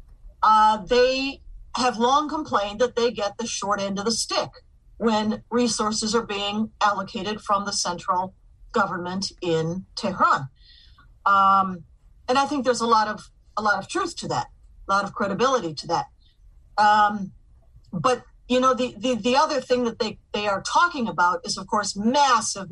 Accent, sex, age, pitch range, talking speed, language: American, female, 40-59, 180-240 Hz, 170 wpm, English